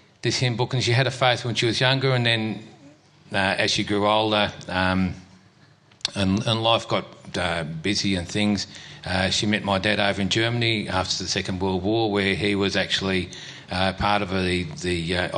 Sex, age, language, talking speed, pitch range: male, 40-59, English, 200 wpm, 95-115 Hz